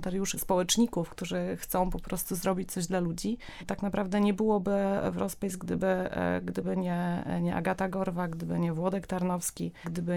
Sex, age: female, 20-39